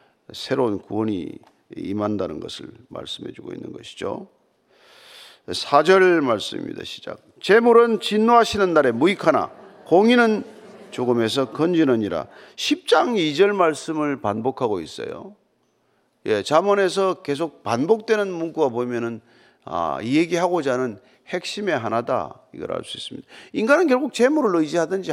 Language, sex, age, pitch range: Korean, male, 40-59, 145-235 Hz